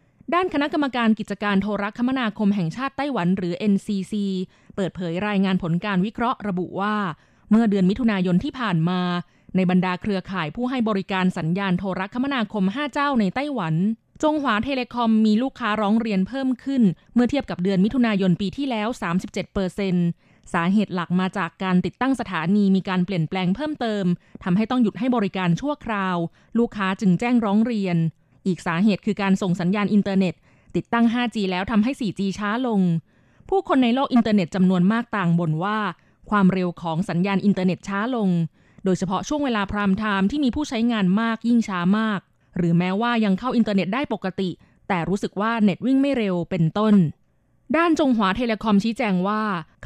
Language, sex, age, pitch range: Thai, female, 20-39, 185-230 Hz